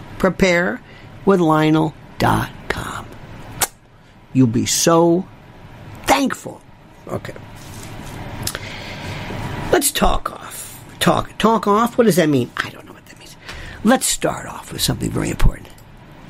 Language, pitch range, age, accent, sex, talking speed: English, 155-240 Hz, 50-69, American, male, 115 wpm